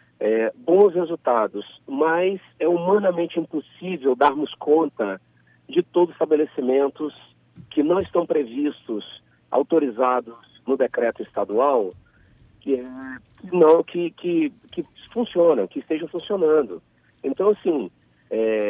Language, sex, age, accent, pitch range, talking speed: Portuguese, male, 50-69, Brazilian, 130-210 Hz, 115 wpm